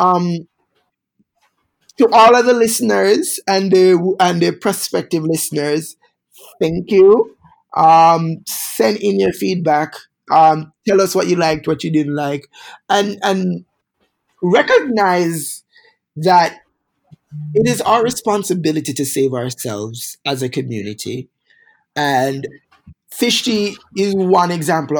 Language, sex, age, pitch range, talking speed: English, male, 20-39, 145-180 Hz, 115 wpm